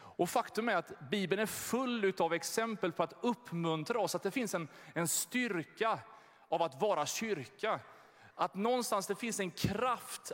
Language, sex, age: Swedish, male, 30-49